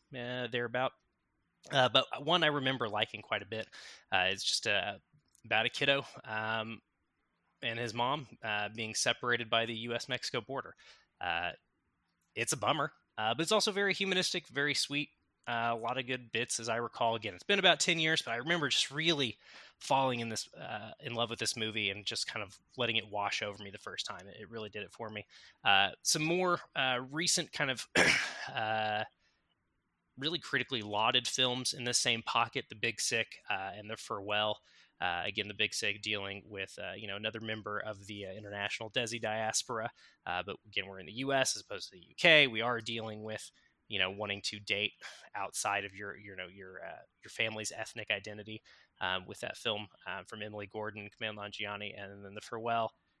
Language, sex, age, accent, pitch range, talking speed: English, male, 20-39, American, 105-125 Hz, 200 wpm